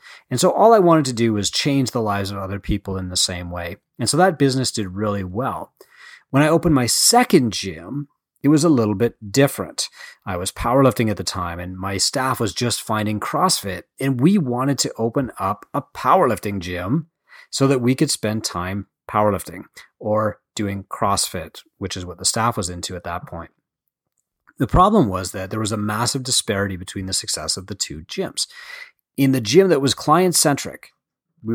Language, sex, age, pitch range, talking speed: English, male, 30-49, 100-135 Hz, 195 wpm